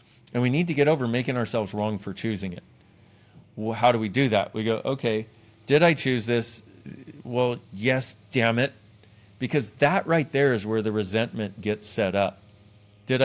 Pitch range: 105-140 Hz